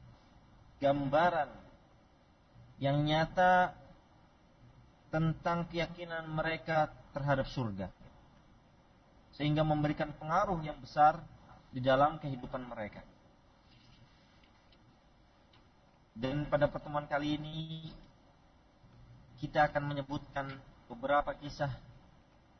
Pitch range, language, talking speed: 125-150 Hz, Malay, 70 wpm